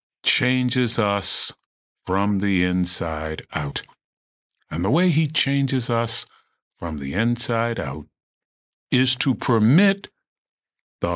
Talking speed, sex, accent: 110 wpm, male, American